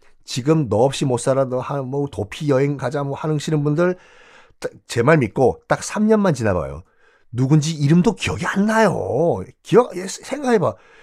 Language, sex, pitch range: Korean, male, 135-210 Hz